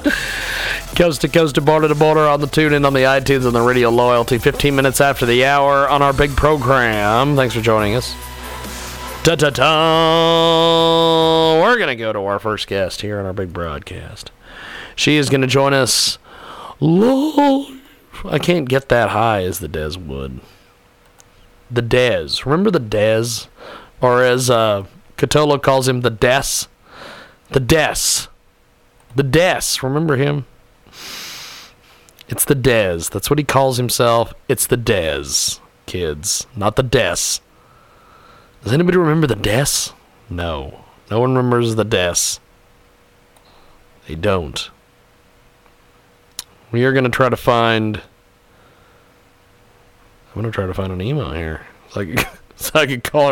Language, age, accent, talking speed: English, 40-59, American, 145 wpm